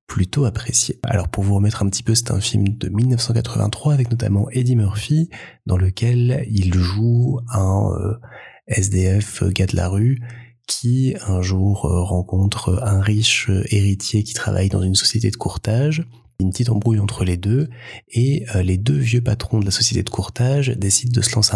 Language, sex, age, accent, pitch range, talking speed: French, male, 20-39, French, 95-120 Hz, 175 wpm